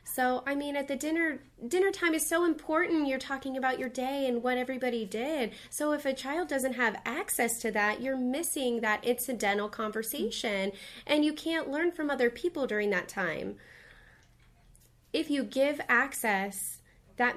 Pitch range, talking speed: 200-260 Hz, 170 wpm